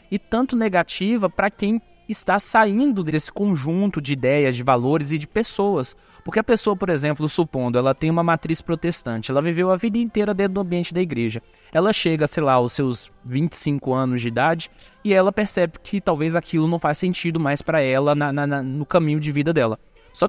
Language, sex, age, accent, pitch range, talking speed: Portuguese, male, 20-39, Brazilian, 140-200 Hz, 190 wpm